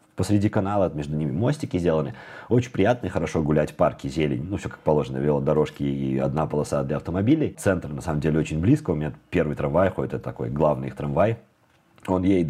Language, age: Russian, 30-49